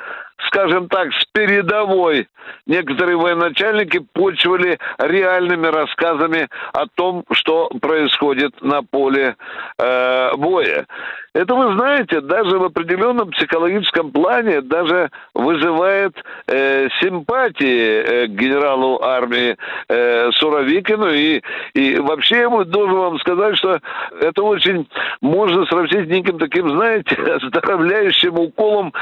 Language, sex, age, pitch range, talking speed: Russian, male, 60-79, 155-220 Hz, 110 wpm